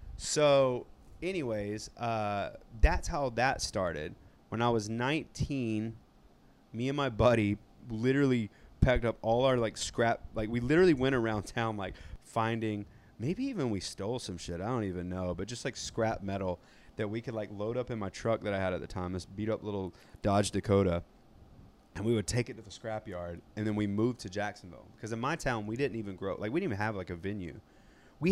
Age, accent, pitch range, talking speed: 30-49, American, 95-120 Hz, 210 wpm